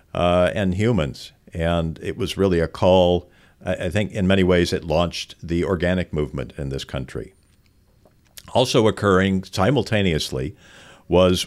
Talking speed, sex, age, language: 135 wpm, male, 50-69, English